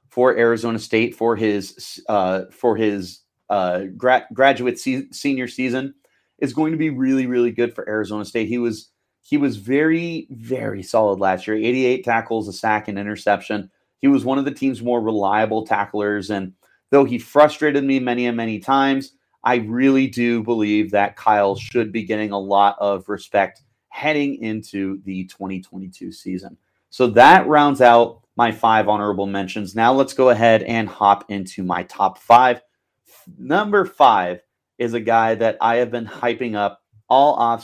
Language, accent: English, American